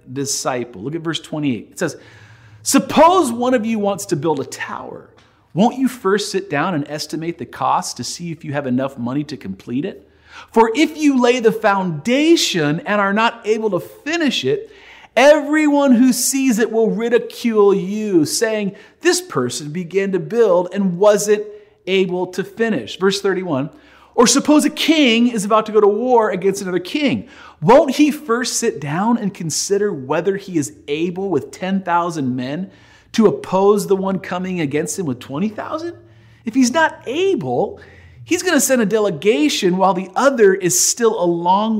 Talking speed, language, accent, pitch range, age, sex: 175 wpm, English, American, 145-235 Hz, 40-59, male